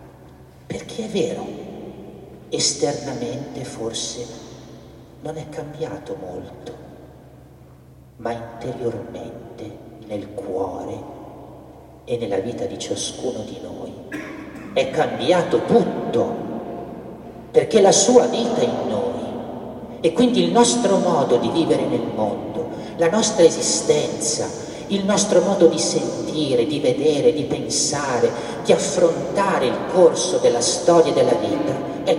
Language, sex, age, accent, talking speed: Italian, male, 50-69, native, 115 wpm